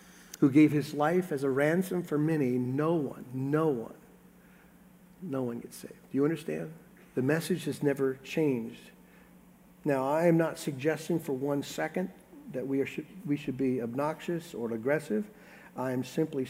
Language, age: English, 50-69